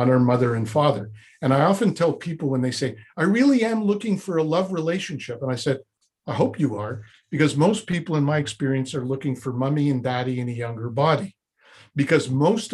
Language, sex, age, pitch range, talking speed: English, male, 50-69, 130-170 Hz, 210 wpm